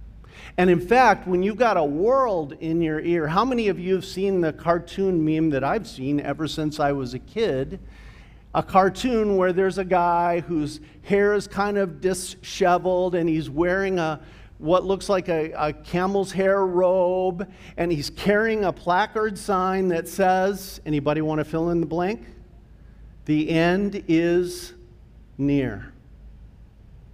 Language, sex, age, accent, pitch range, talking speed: English, male, 50-69, American, 130-185 Hz, 155 wpm